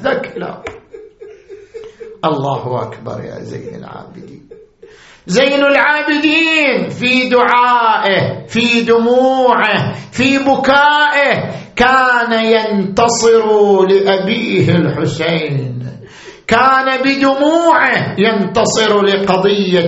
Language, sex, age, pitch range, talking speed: Arabic, male, 50-69, 190-245 Hz, 65 wpm